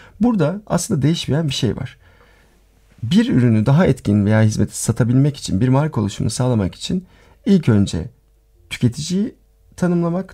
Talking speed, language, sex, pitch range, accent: 135 wpm, Turkish, male, 110-155 Hz, native